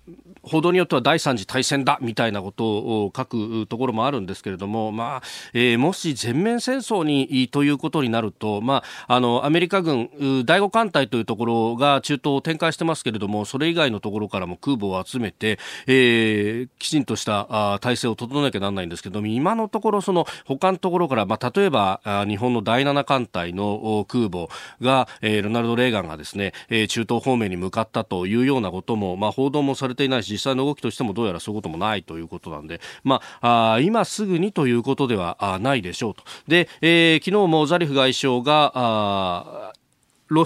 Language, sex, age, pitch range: Japanese, male, 40-59, 105-145 Hz